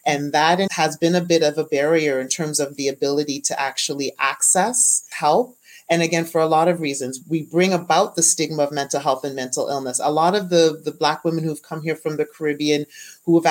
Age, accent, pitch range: 30-49, American, 145-170 Hz